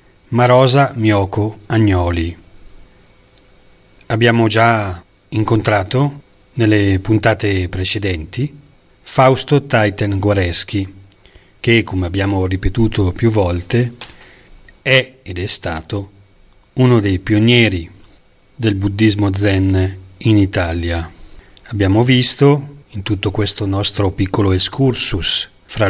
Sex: male